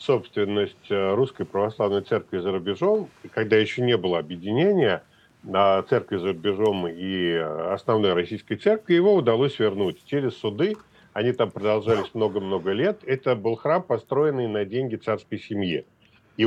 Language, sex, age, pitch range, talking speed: Russian, male, 40-59, 105-130 Hz, 140 wpm